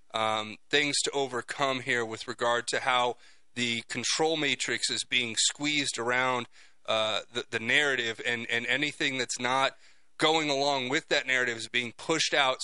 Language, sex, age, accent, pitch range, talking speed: English, male, 30-49, American, 120-145 Hz, 160 wpm